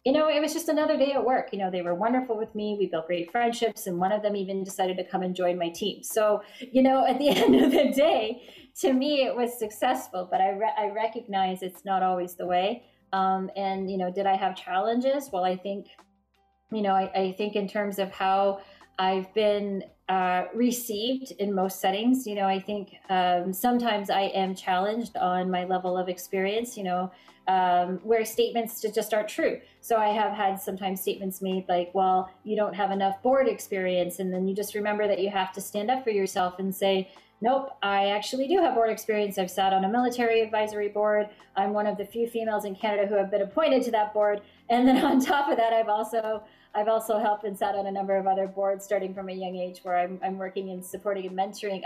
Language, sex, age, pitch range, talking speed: English, female, 30-49, 190-225 Hz, 225 wpm